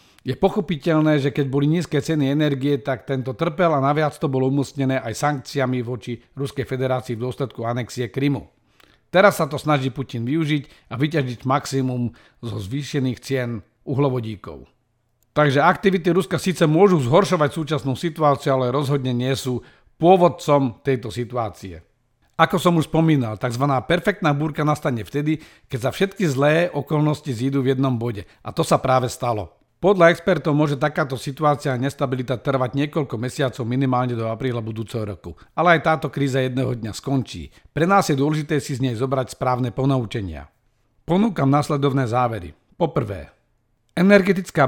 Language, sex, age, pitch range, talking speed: Slovak, male, 50-69, 125-155 Hz, 150 wpm